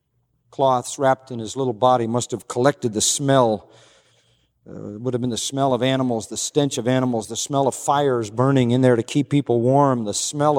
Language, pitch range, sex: English, 115-140 Hz, male